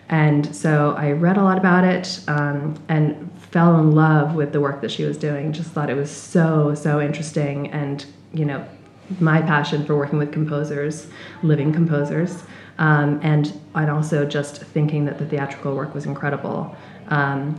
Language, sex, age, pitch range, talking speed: English, female, 20-39, 150-170 Hz, 175 wpm